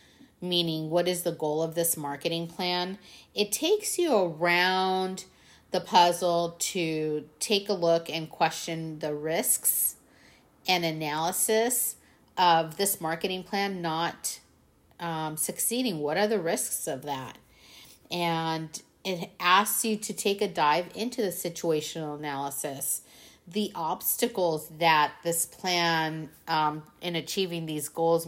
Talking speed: 125 wpm